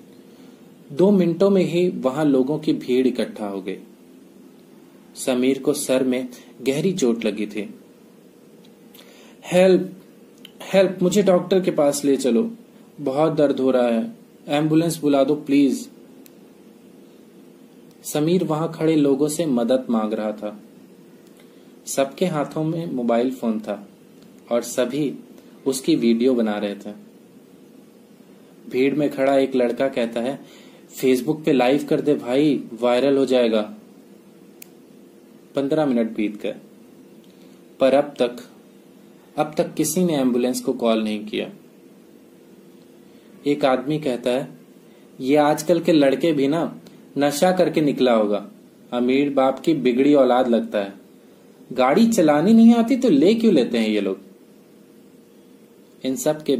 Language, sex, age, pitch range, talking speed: English, male, 30-49, 120-160 Hz, 135 wpm